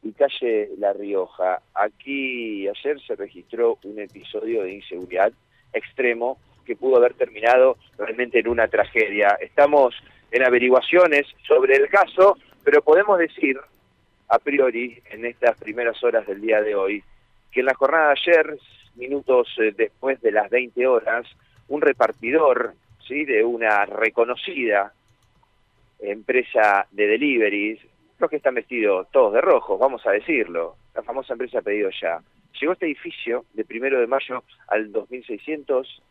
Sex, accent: male, Argentinian